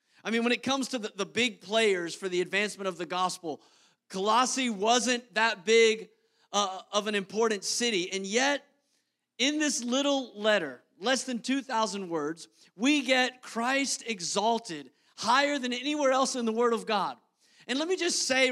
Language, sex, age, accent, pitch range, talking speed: English, male, 40-59, American, 205-255 Hz, 170 wpm